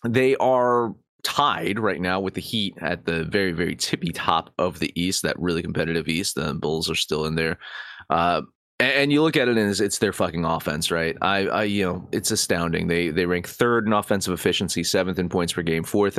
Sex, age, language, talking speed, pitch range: male, 30-49, English, 220 wpm, 95-125 Hz